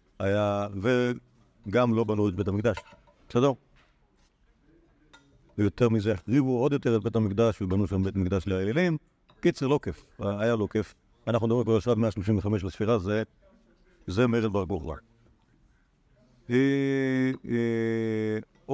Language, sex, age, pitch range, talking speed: Hebrew, male, 50-69, 100-130 Hz, 130 wpm